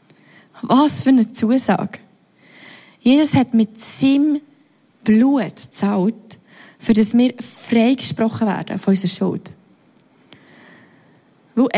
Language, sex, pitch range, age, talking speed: German, female, 220-275 Hz, 20-39, 100 wpm